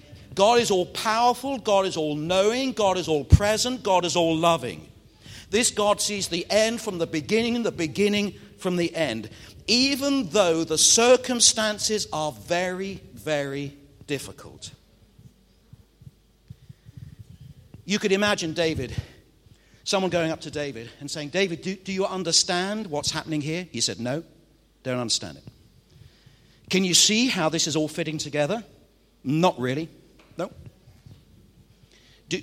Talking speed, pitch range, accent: 140 wpm, 140-195 Hz, British